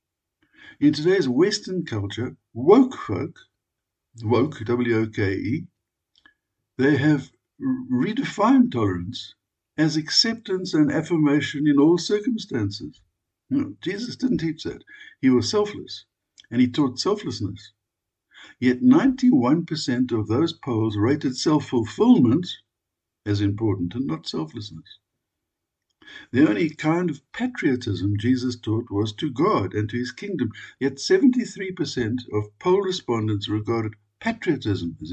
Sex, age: male, 60-79